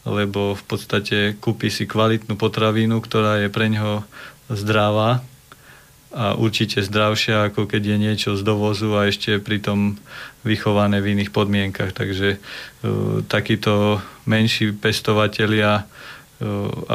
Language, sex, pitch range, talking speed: Slovak, male, 105-115 Hz, 120 wpm